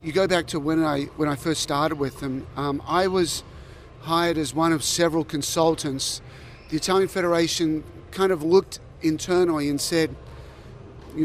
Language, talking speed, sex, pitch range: English, 165 wpm, male, 145-165 Hz